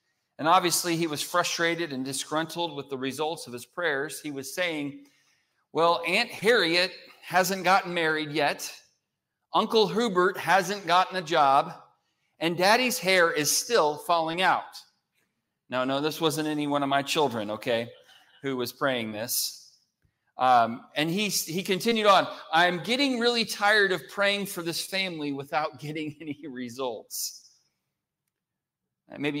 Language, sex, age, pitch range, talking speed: English, male, 40-59, 150-185 Hz, 145 wpm